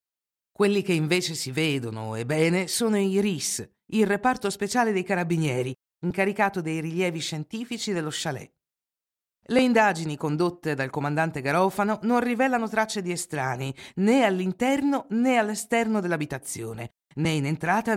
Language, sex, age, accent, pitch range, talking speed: Italian, female, 50-69, native, 155-210 Hz, 130 wpm